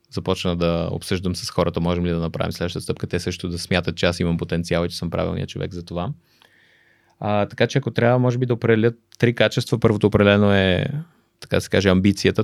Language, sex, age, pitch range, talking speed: Bulgarian, male, 20-39, 90-110 Hz, 215 wpm